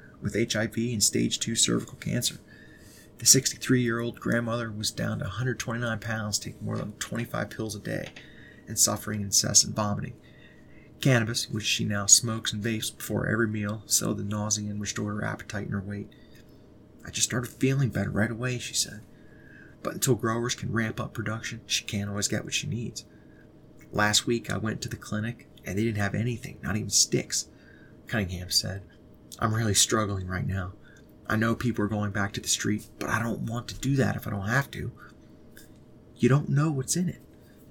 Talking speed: 190 wpm